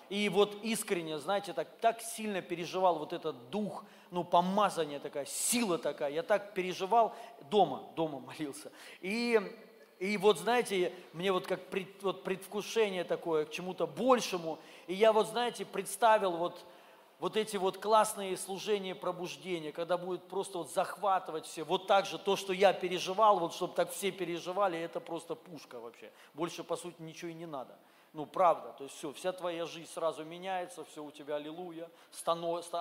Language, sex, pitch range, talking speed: Russian, male, 170-210 Hz, 165 wpm